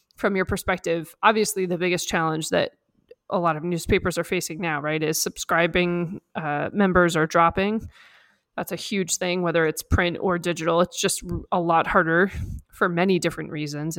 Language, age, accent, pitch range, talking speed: English, 20-39, American, 165-195 Hz, 170 wpm